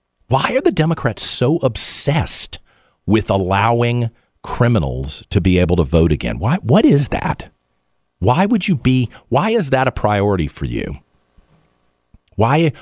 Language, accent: English, American